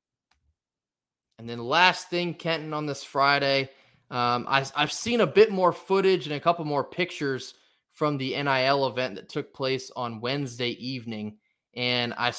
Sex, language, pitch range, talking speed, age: male, English, 125-155 Hz, 155 wpm, 20-39